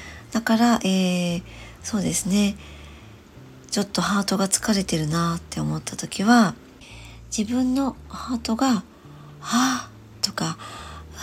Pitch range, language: 170-235 Hz, Japanese